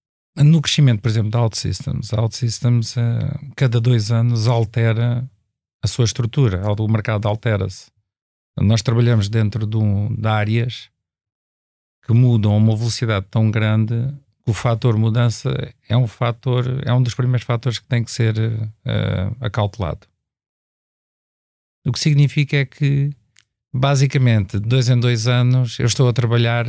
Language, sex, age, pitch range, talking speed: Portuguese, male, 50-69, 110-125 Hz, 155 wpm